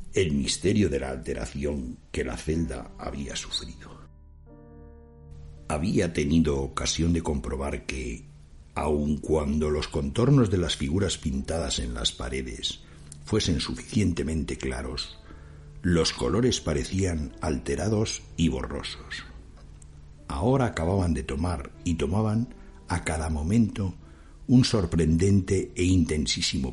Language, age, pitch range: Spanish, 60-79, 75-90 Hz